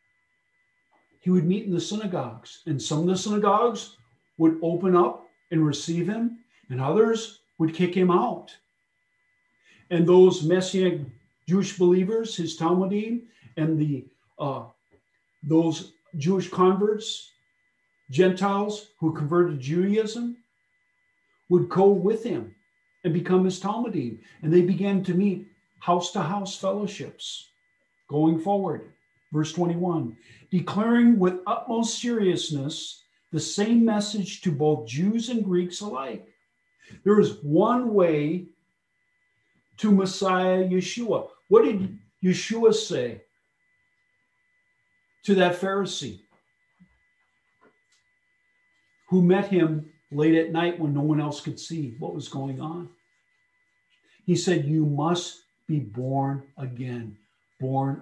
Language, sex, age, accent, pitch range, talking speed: English, male, 50-69, American, 155-215 Hz, 115 wpm